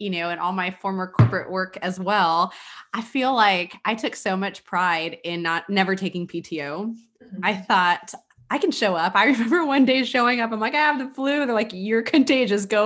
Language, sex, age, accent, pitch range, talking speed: English, female, 20-39, American, 170-225 Hz, 215 wpm